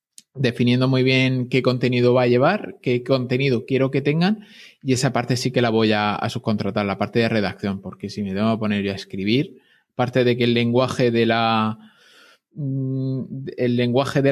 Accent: Spanish